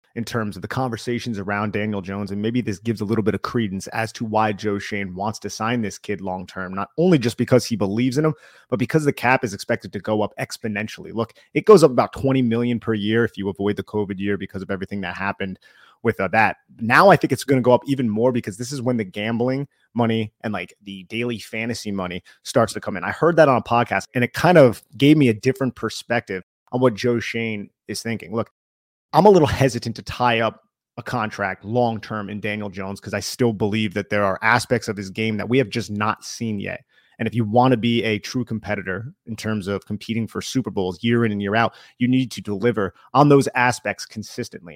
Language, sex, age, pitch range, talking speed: English, male, 30-49, 105-125 Hz, 235 wpm